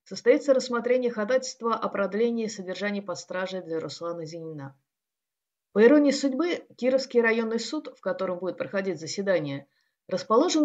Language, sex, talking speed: Russian, female, 125 wpm